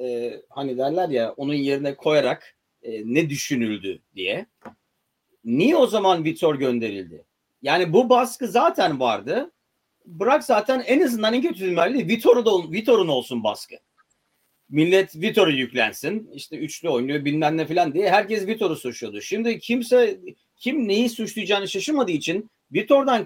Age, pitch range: 40-59, 125-210 Hz